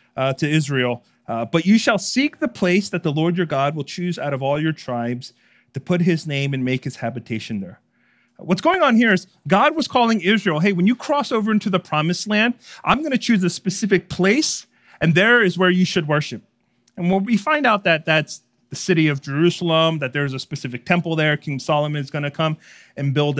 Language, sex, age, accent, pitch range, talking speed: English, male, 30-49, American, 145-205 Hz, 225 wpm